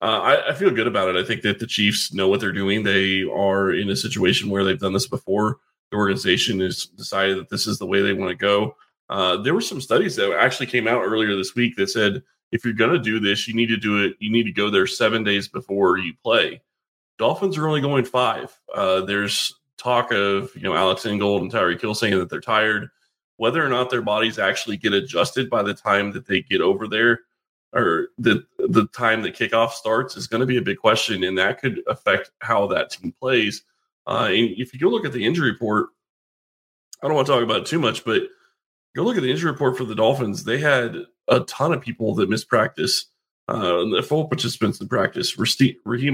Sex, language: male, English